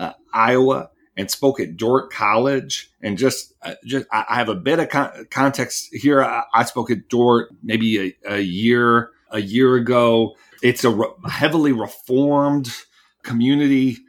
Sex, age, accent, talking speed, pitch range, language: male, 40-59, American, 160 wpm, 115-135 Hz, English